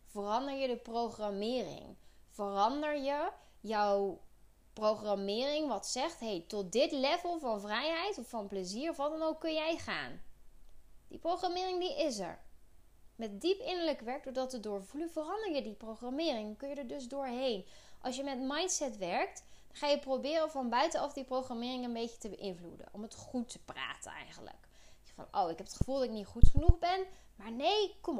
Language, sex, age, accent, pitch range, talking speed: Dutch, female, 20-39, Dutch, 220-305 Hz, 180 wpm